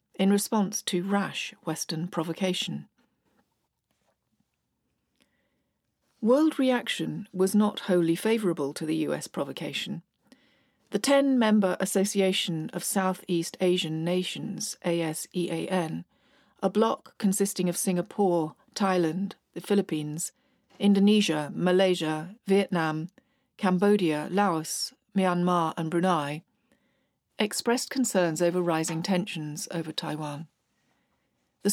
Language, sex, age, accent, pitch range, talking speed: English, female, 40-59, British, 165-205 Hz, 95 wpm